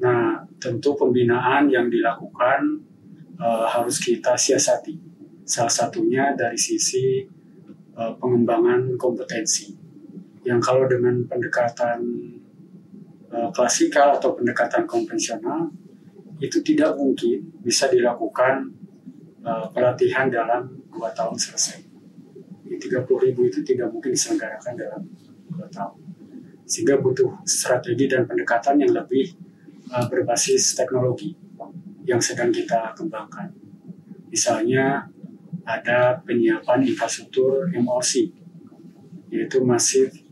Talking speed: 100 wpm